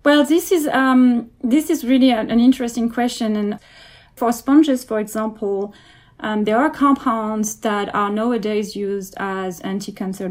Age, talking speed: 30-49, 150 wpm